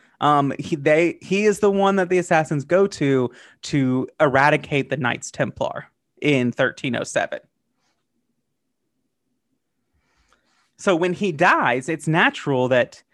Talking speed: 115 wpm